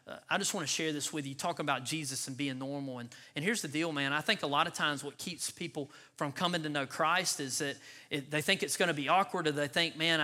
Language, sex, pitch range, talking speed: English, male, 145-190 Hz, 270 wpm